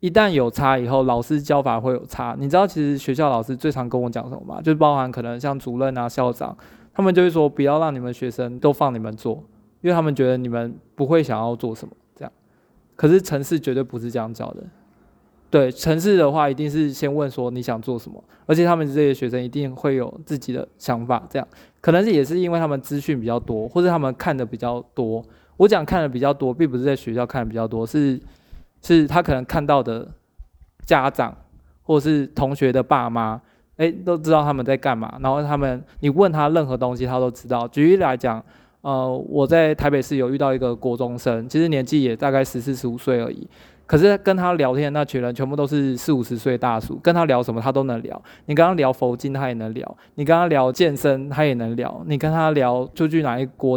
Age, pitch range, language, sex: 20-39, 125-150 Hz, Chinese, male